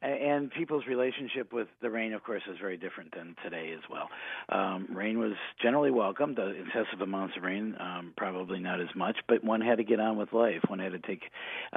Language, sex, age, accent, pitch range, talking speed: English, male, 50-69, American, 95-115 Hz, 220 wpm